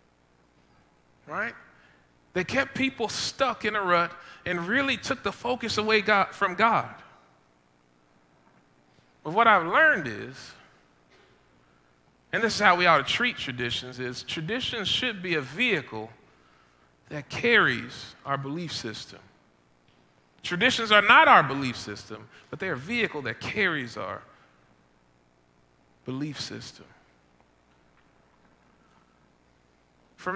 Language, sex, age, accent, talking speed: English, male, 40-59, American, 115 wpm